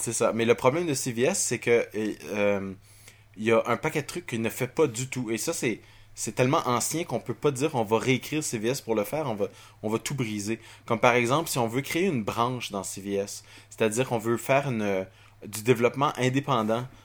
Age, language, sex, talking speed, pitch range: 20-39, French, male, 225 wpm, 105-125 Hz